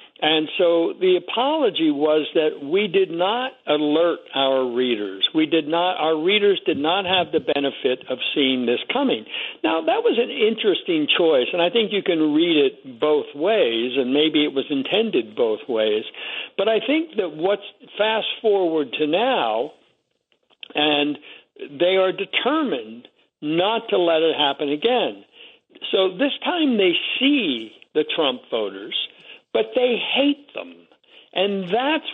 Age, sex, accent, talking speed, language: 60-79, male, American, 150 wpm, English